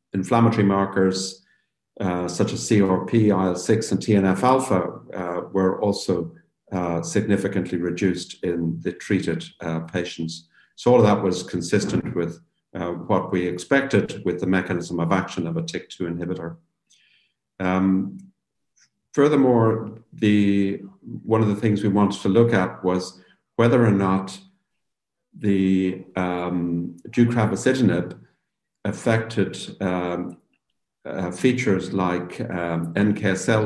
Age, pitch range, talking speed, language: 50-69, 90-105 Hz, 120 wpm, English